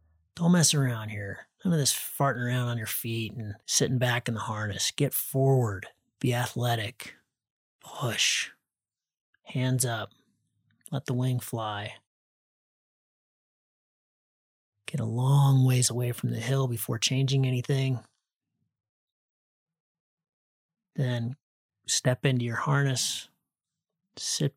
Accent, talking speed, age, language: American, 110 wpm, 30-49, English